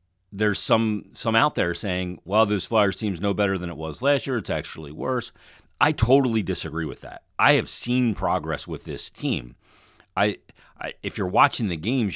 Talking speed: 190 wpm